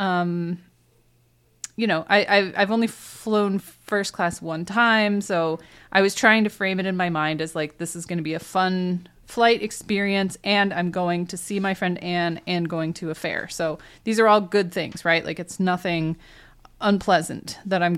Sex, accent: female, American